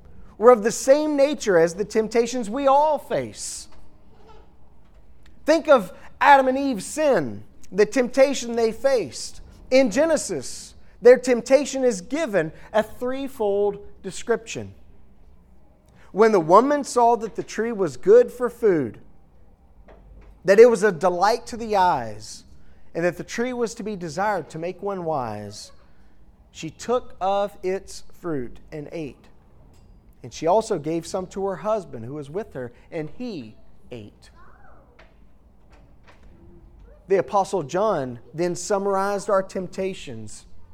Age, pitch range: 30-49, 155-230 Hz